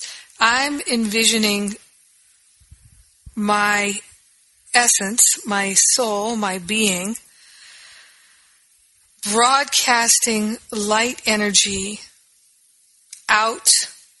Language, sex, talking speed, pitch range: English, female, 50 wpm, 200-230 Hz